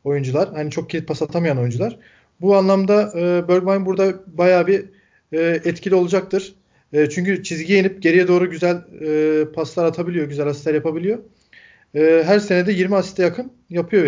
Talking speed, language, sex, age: 160 wpm, Turkish, male, 40-59